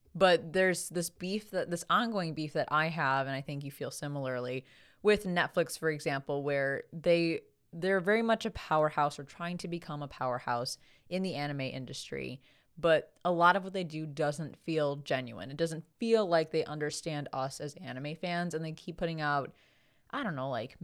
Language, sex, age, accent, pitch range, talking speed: English, female, 20-39, American, 140-175 Hz, 195 wpm